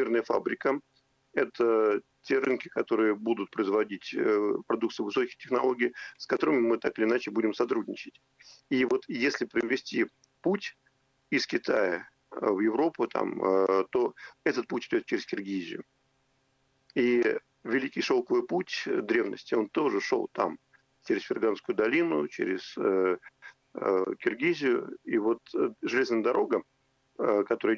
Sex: male